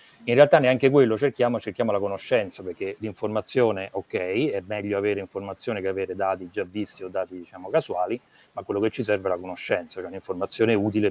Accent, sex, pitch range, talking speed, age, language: native, male, 100-120 Hz, 195 wpm, 30-49, Italian